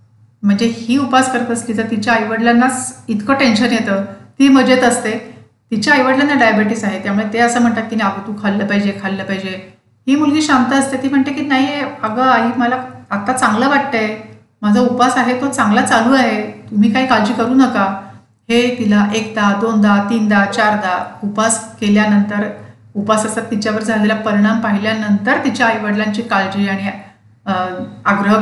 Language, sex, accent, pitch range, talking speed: Marathi, female, native, 200-250 Hz, 160 wpm